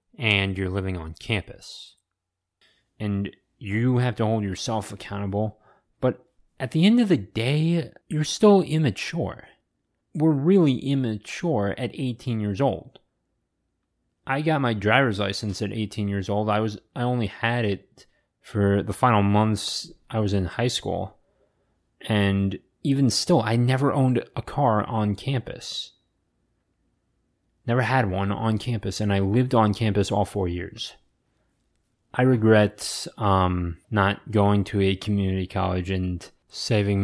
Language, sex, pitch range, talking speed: English, male, 100-120 Hz, 140 wpm